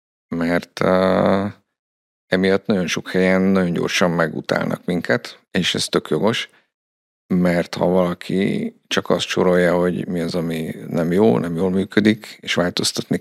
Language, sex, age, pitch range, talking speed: Hungarian, male, 50-69, 85-100 Hz, 140 wpm